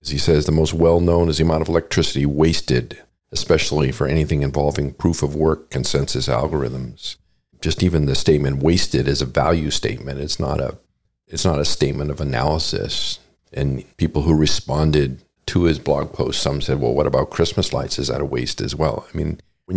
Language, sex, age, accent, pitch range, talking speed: English, male, 50-69, American, 70-80 Hz, 195 wpm